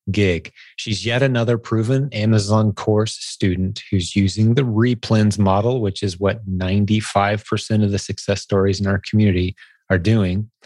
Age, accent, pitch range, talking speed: 30-49, American, 95-115 Hz, 145 wpm